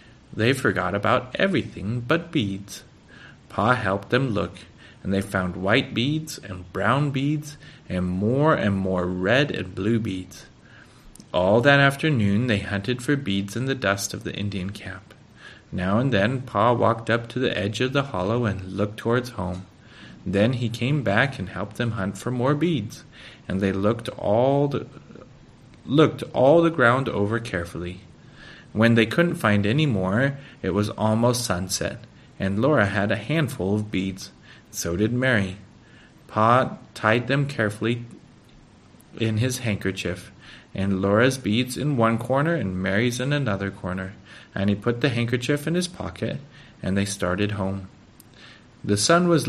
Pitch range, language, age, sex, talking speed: 95-125 Hz, English, 30-49, male, 155 wpm